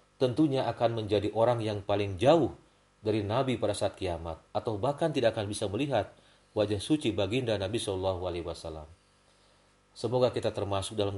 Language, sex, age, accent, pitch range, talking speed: Indonesian, male, 40-59, native, 100-125 Hz, 155 wpm